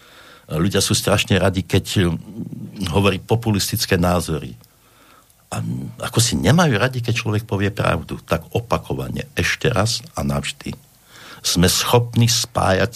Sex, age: male, 60-79